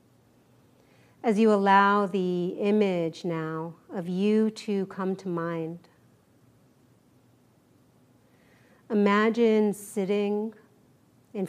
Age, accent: 40-59, American